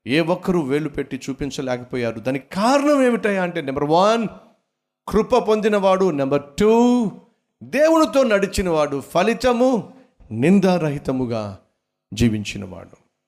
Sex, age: male, 50-69